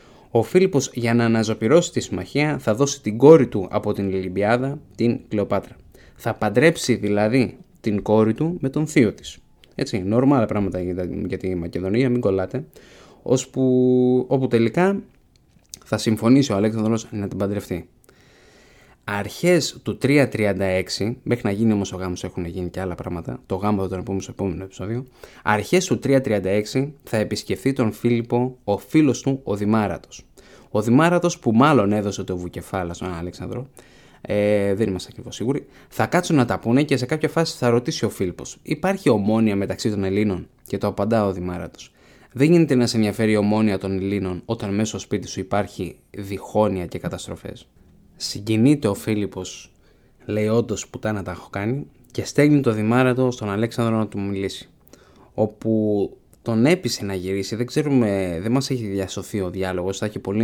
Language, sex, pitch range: Greek, male, 95-125 Hz